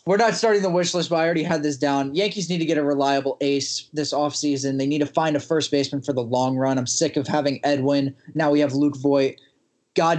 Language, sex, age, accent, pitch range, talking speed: English, male, 20-39, American, 145-195 Hz, 255 wpm